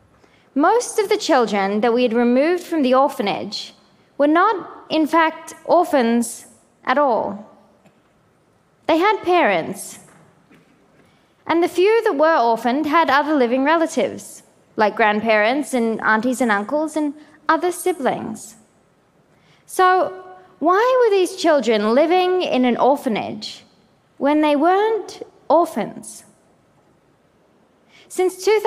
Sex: female